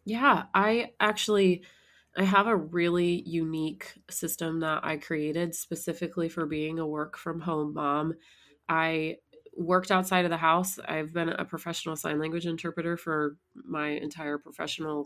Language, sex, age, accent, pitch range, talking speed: English, female, 20-39, American, 160-190 Hz, 145 wpm